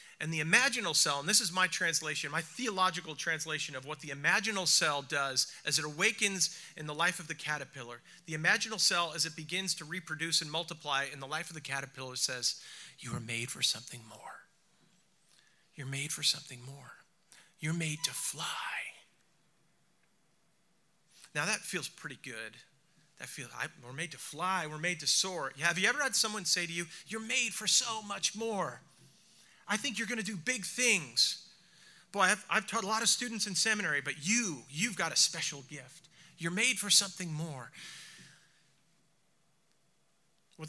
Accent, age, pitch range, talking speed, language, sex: American, 40-59, 140-185 Hz, 175 wpm, English, male